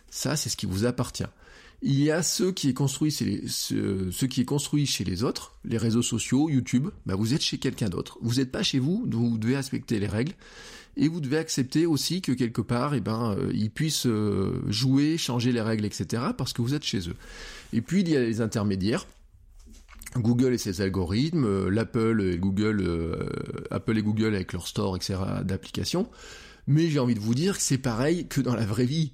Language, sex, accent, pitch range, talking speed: French, male, French, 105-140 Hz, 215 wpm